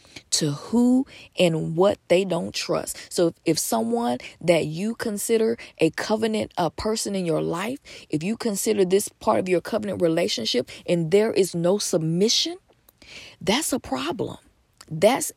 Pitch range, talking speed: 170-215 Hz, 150 wpm